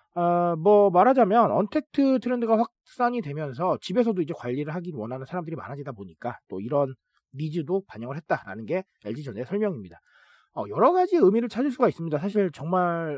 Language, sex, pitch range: Korean, male, 155-240 Hz